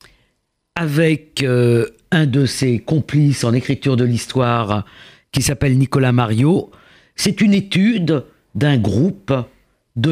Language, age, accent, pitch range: French, 60-79, French, 125-170 Hz